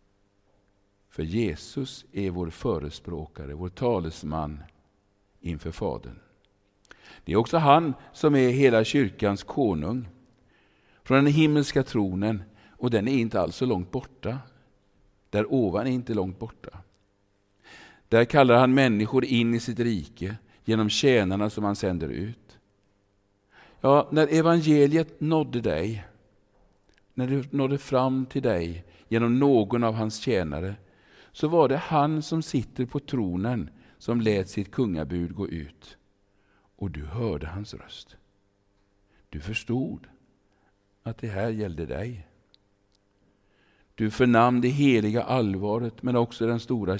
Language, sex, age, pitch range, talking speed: Swedish, male, 50-69, 100-120 Hz, 130 wpm